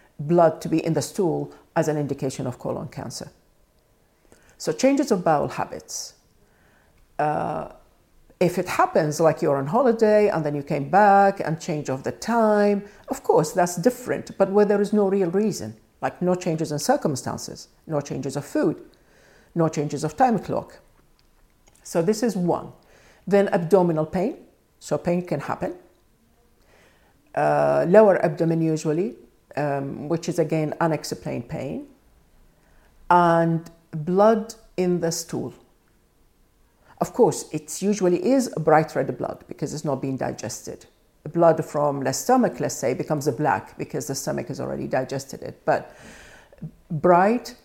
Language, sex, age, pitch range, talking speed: English, female, 50-69, 150-200 Hz, 145 wpm